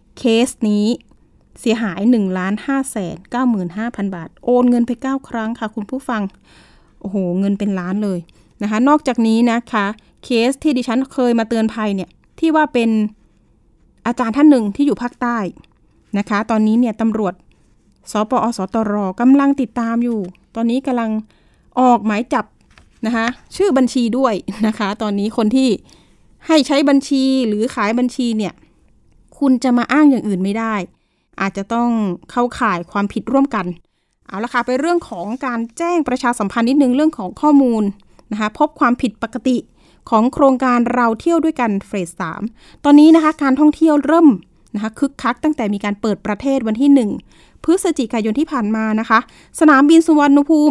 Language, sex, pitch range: Thai, female, 215-275 Hz